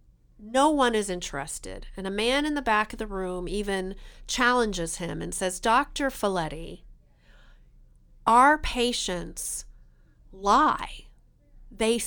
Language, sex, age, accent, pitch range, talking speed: English, female, 40-59, American, 175-235 Hz, 120 wpm